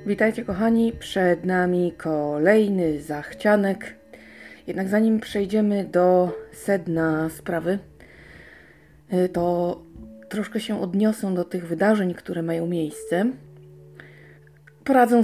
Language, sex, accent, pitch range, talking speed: Polish, female, native, 160-210 Hz, 90 wpm